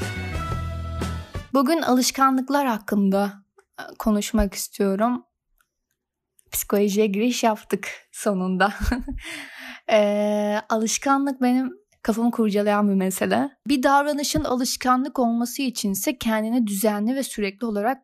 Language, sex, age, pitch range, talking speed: Turkish, female, 10-29, 205-245 Hz, 90 wpm